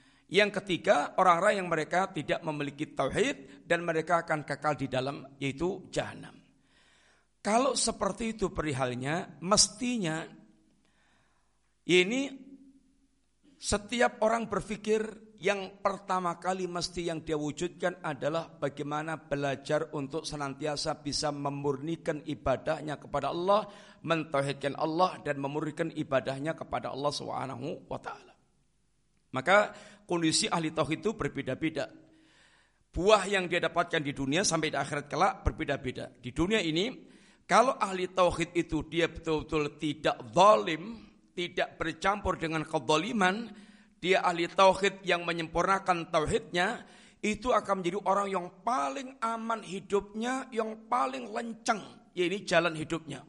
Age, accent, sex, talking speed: 50-69, native, male, 115 wpm